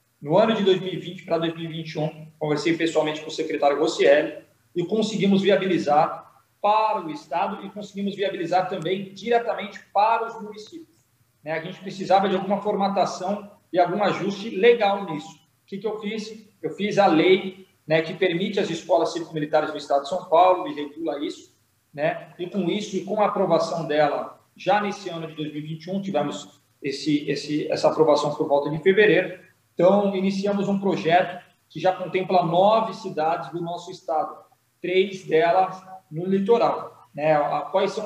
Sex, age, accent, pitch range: male, 40-59, Brazilian, 165-200 Hz